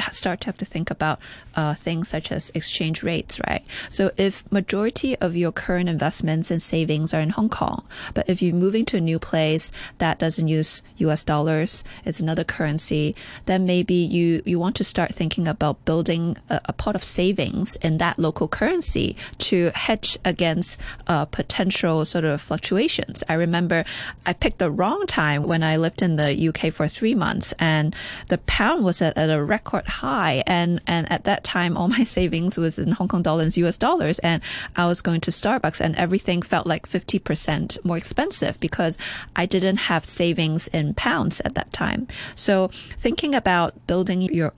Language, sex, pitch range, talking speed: English, female, 160-185 Hz, 185 wpm